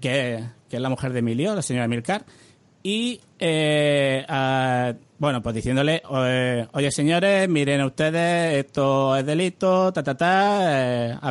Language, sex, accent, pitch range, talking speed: Spanish, male, Spanish, 125-160 Hz, 155 wpm